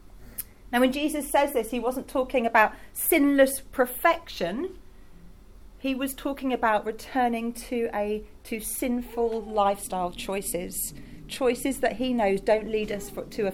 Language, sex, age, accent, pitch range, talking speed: English, female, 40-59, British, 185-245 Hz, 140 wpm